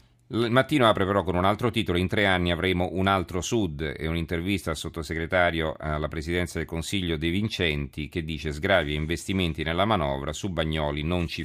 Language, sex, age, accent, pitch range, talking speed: Italian, male, 40-59, native, 80-105 Hz, 185 wpm